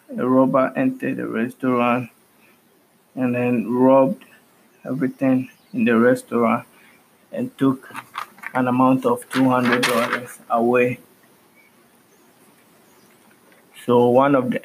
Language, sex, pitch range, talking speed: English, male, 125-135 Hz, 95 wpm